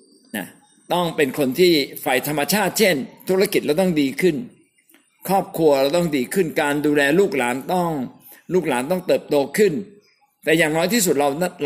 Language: Thai